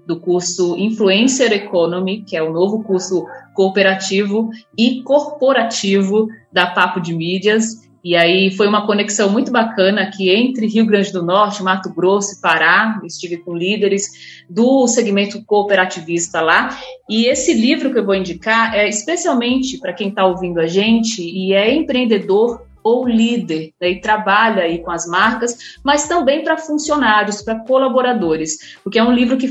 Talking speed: 160 wpm